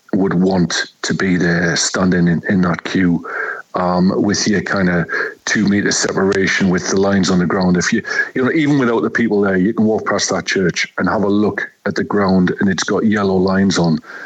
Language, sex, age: English, male, 50-69